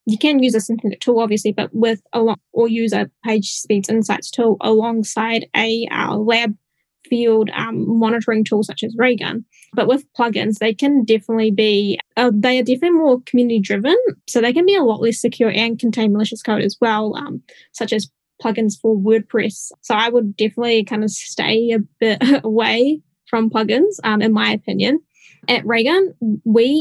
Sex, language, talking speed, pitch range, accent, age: female, English, 185 wpm, 215-250 Hz, Australian, 10-29